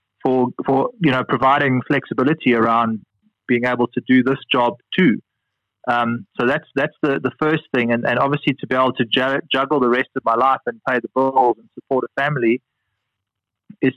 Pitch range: 120-140 Hz